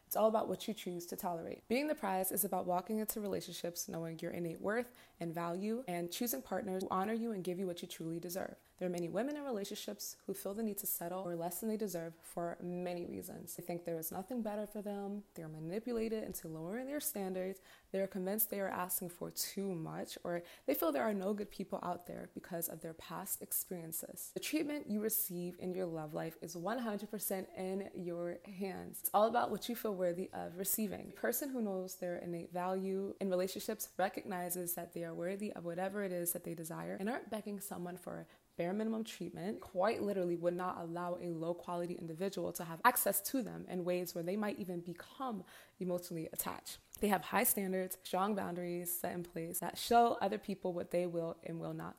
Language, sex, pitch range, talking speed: English, female, 175-210 Hz, 215 wpm